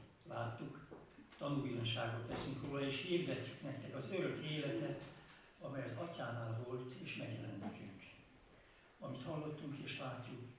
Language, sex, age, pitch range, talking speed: Hungarian, male, 60-79, 125-145 Hz, 115 wpm